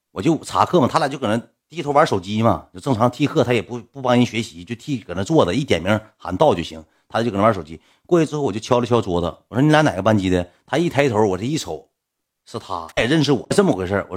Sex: male